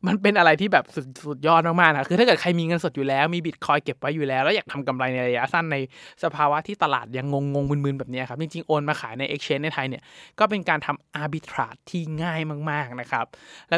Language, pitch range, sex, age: Thai, 140-170 Hz, male, 20-39